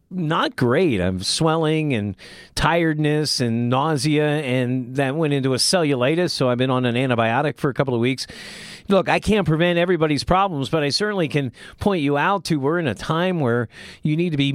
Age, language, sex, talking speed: 40-59, English, male, 200 wpm